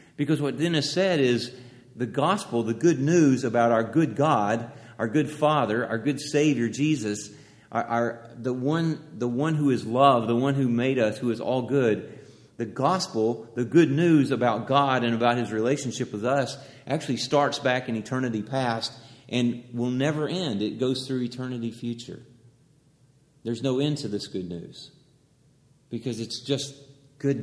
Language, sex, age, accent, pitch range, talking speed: English, male, 40-59, American, 115-145 Hz, 170 wpm